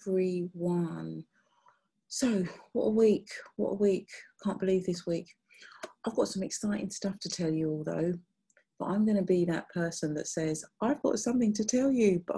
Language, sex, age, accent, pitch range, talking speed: English, female, 30-49, British, 165-205 Hz, 185 wpm